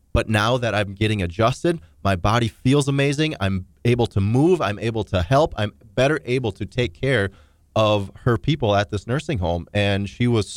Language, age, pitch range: English, 30-49, 100-125 Hz